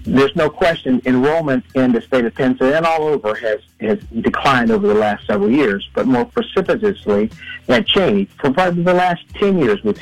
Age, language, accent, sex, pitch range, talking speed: 60-79, English, American, male, 120-180 Hz, 190 wpm